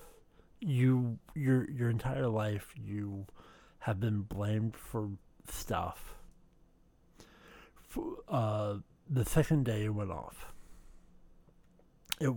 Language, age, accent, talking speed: English, 50-69, American, 85 wpm